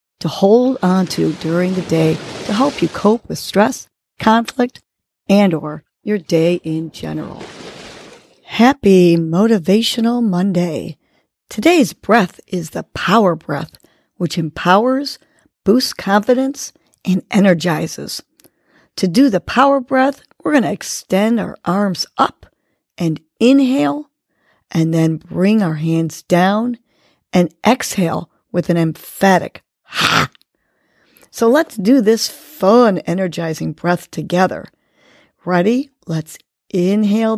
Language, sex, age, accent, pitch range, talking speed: English, female, 50-69, American, 175-250 Hz, 115 wpm